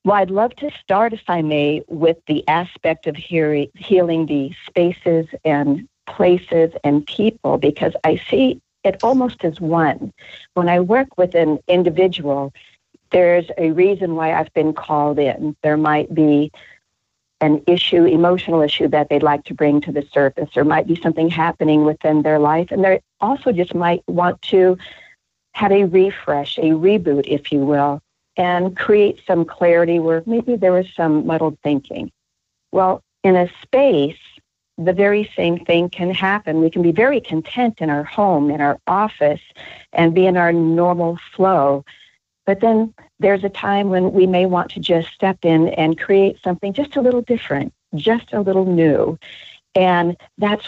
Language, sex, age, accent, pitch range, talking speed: English, female, 50-69, American, 155-190 Hz, 170 wpm